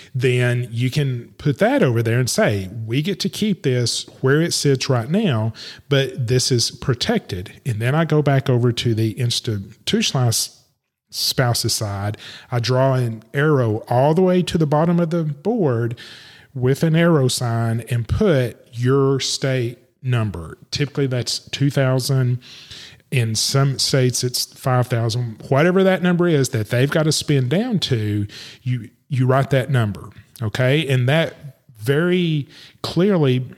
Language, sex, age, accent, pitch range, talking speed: English, male, 30-49, American, 120-145 Hz, 150 wpm